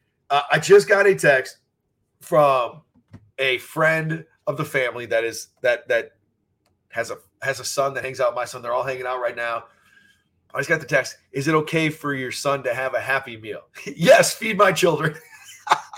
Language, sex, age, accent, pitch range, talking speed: English, male, 30-49, American, 140-195 Hz, 200 wpm